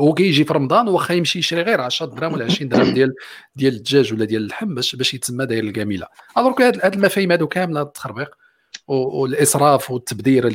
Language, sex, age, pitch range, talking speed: Arabic, male, 40-59, 105-145 Hz, 195 wpm